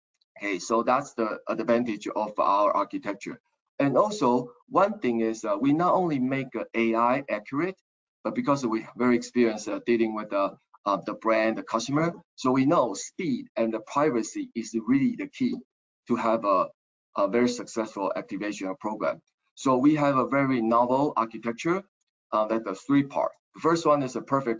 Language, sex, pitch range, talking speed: English, male, 110-140 Hz, 175 wpm